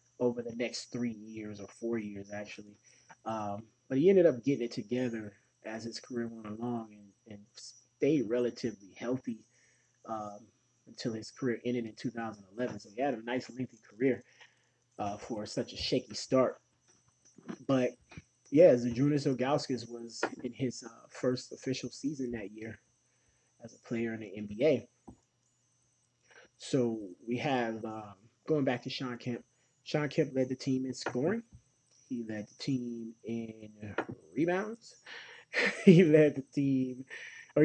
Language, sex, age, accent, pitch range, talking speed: English, male, 20-39, American, 115-130 Hz, 150 wpm